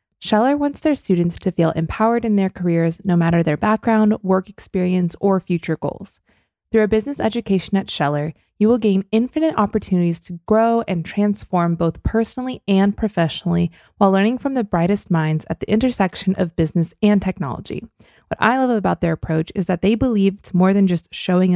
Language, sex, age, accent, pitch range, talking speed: English, female, 20-39, American, 175-220 Hz, 185 wpm